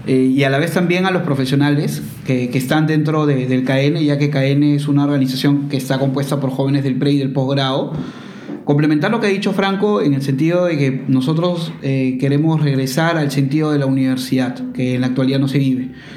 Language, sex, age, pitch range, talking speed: Spanish, male, 20-39, 130-150 Hz, 220 wpm